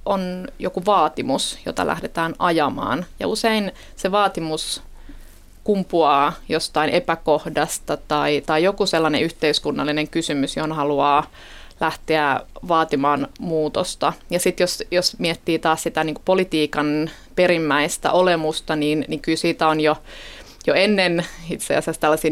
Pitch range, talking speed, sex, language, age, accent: 155-185 Hz, 125 wpm, female, Finnish, 30-49, native